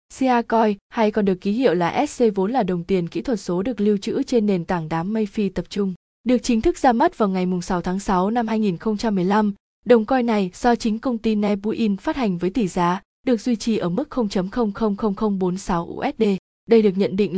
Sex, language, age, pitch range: female, Vietnamese, 20-39, 195-235 Hz